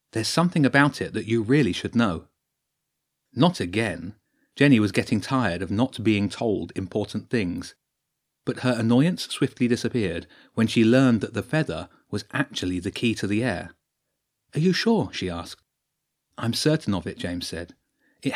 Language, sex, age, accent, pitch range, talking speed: English, male, 30-49, British, 100-135 Hz, 165 wpm